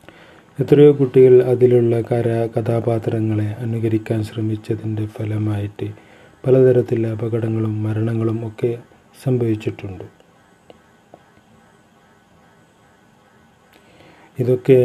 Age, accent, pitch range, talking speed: 30-49, native, 110-125 Hz, 55 wpm